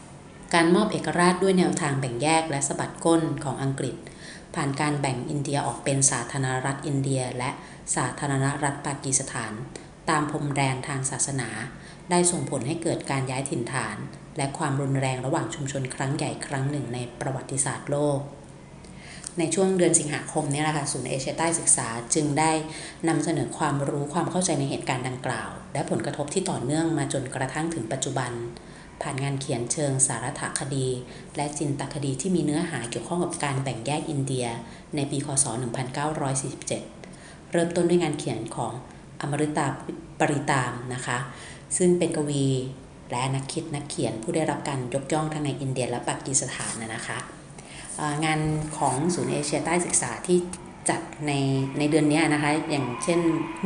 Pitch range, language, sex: 135-160 Hz, Thai, female